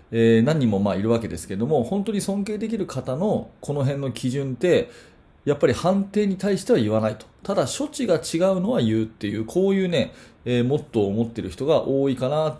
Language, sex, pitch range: Japanese, male, 105-150 Hz